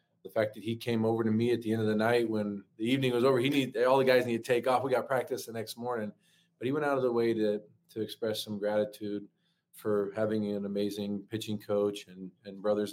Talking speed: 255 wpm